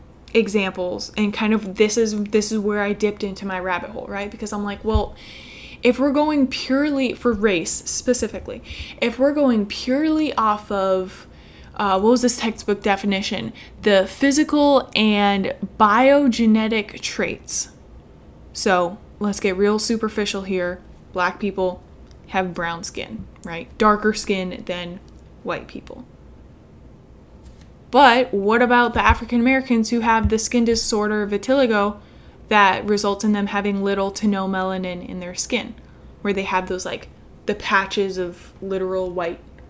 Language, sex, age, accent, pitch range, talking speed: English, female, 10-29, American, 190-230 Hz, 140 wpm